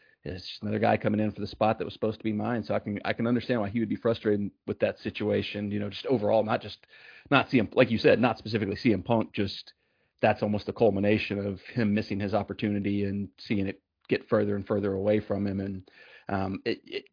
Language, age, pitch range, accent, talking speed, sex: English, 40-59, 100-115 Hz, American, 240 wpm, male